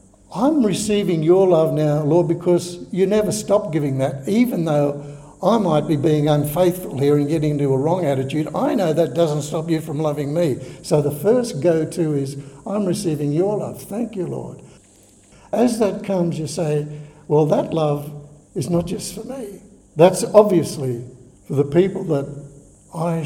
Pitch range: 145-185 Hz